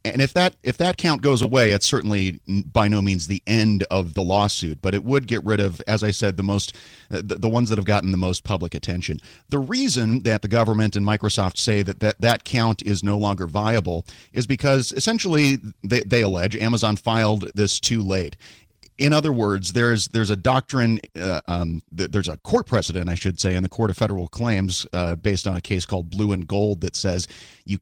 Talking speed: 215 wpm